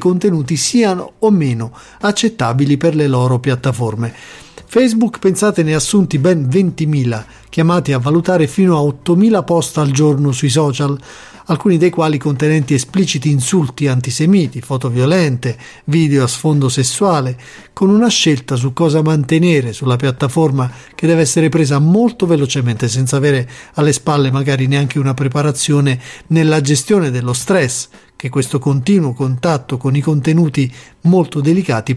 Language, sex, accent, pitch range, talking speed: Italian, male, native, 135-175 Hz, 140 wpm